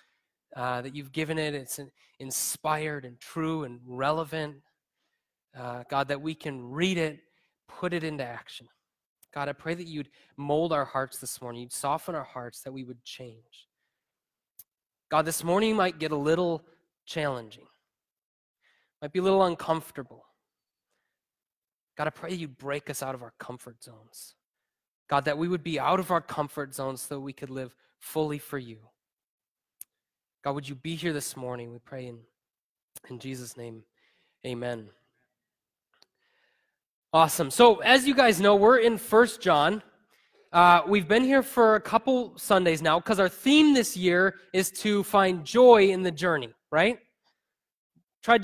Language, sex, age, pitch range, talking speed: English, male, 20-39, 135-195 Hz, 160 wpm